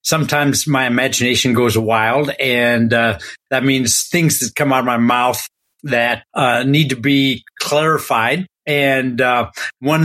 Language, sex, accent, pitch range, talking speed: English, male, American, 120-145 Hz, 150 wpm